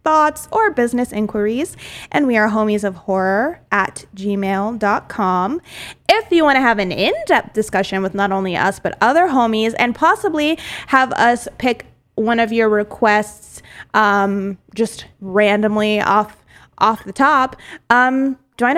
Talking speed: 145 wpm